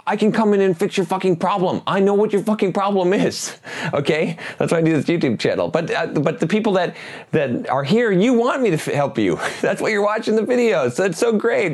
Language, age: English, 30-49